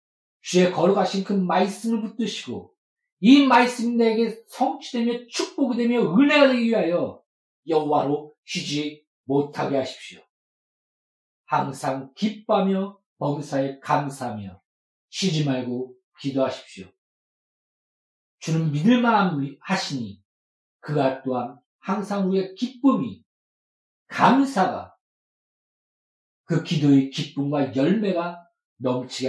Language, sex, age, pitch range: Korean, male, 40-59, 140-195 Hz